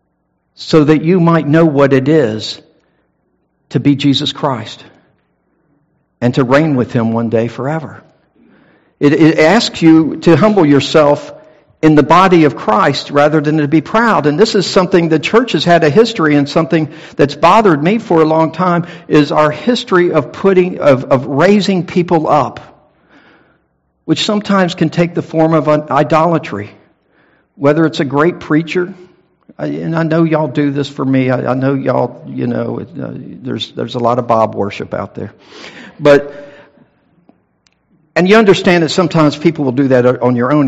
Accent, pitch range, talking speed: American, 120-165 Hz, 165 wpm